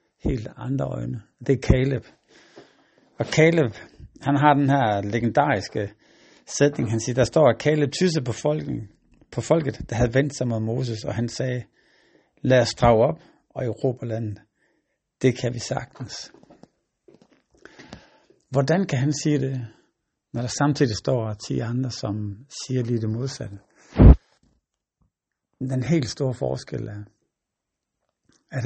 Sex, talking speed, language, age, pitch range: male, 135 wpm, Danish, 60-79, 115-140 Hz